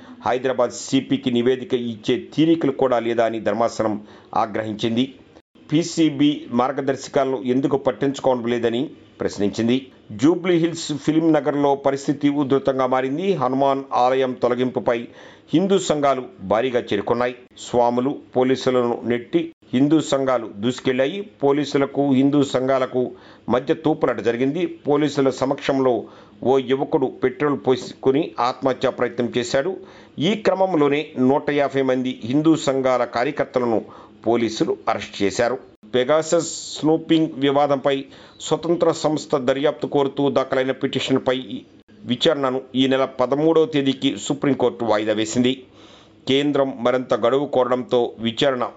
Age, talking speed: 50-69, 90 wpm